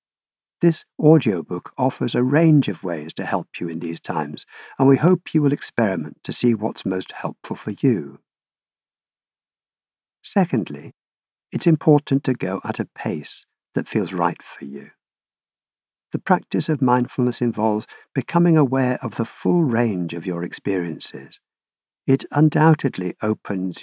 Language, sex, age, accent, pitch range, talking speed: English, male, 50-69, British, 95-150 Hz, 140 wpm